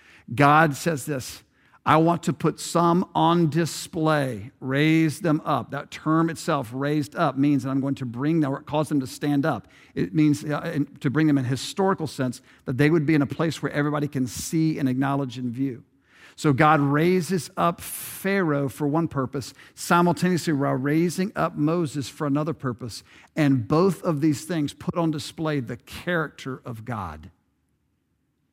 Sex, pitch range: male, 135-170 Hz